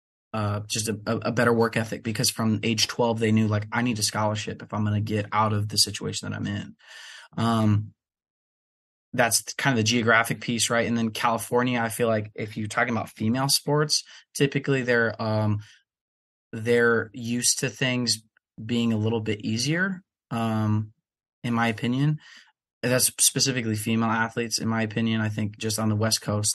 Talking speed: 180 wpm